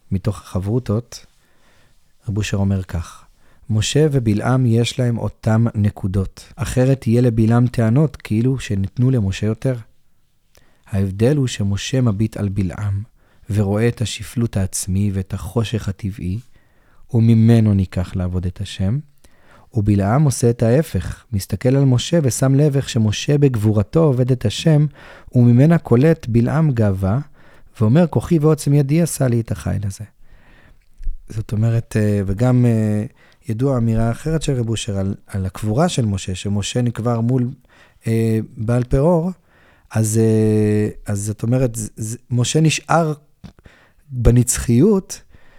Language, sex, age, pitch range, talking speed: Hebrew, male, 30-49, 105-130 Hz, 120 wpm